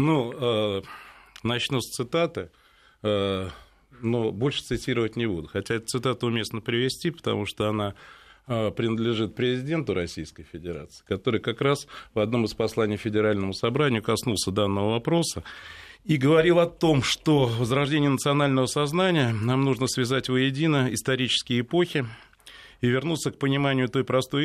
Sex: male